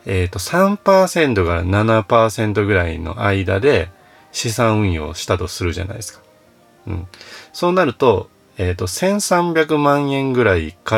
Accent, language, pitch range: native, Japanese, 95-135 Hz